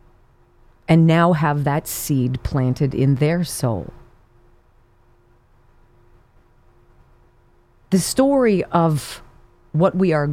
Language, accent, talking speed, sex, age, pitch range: English, American, 85 wpm, female, 40-59, 120-160 Hz